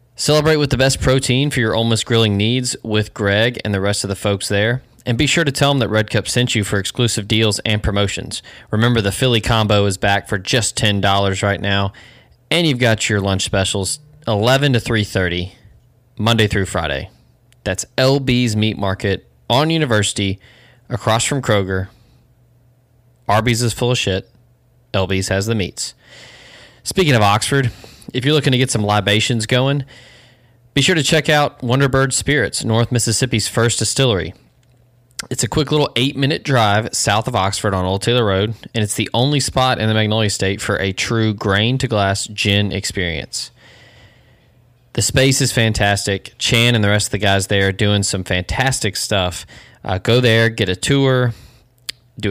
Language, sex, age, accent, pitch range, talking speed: English, male, 20-39, American, 100-125 Hz, 170 wpm